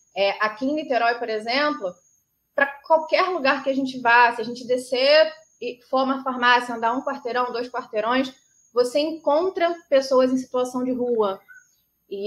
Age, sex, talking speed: 20-39, female, 165 wpm